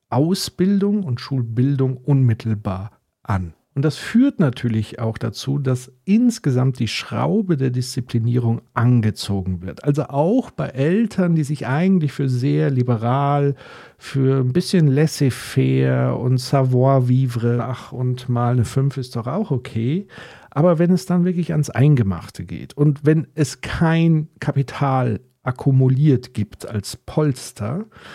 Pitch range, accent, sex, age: 120-155 Hz, German, male, 50-69